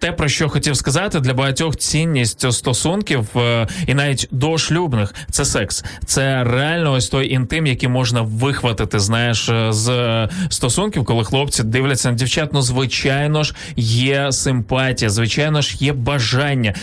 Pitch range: 115-145 Hz